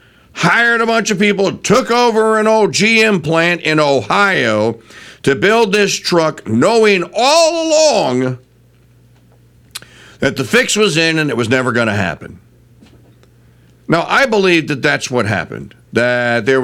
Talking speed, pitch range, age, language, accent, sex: 150 wpm, 115-180 Hz, 50-69, English, American, male